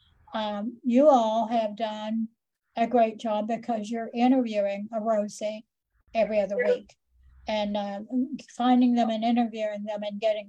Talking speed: 145 wpm